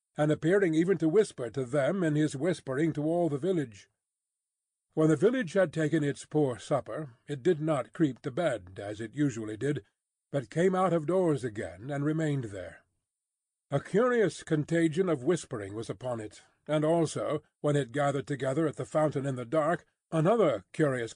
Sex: male